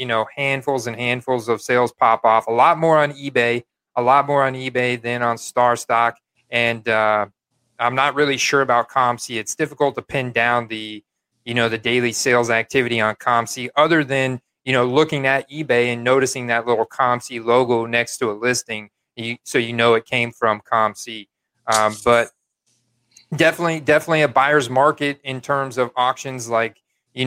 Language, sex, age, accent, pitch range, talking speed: English, male, 30-49, American, 120-135 Hz, 185 wpm